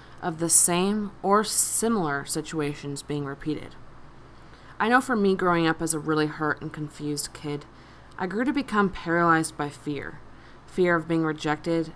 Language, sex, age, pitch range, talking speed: English, female, 20-39, 150-185 Hz, 160 wpm